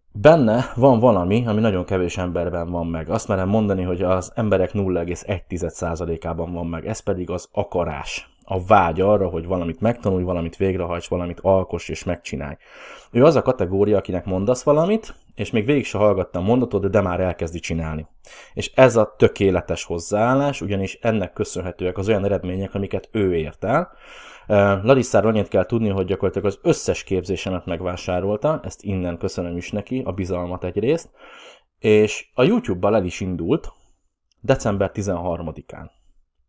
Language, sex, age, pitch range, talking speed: Hungarian, male, 20-39, 85-105 Hz, 150 wpm